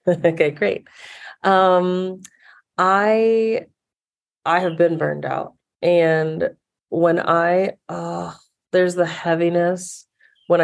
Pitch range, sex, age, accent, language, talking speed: 160-190 Hz, female, 30-49, American, English, 95 wpm